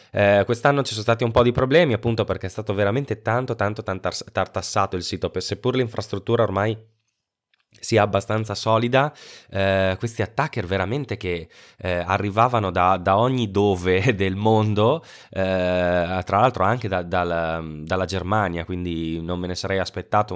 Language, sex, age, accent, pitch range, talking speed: Italian, male, 20-39, native, 85-105 Hz, 160 wpm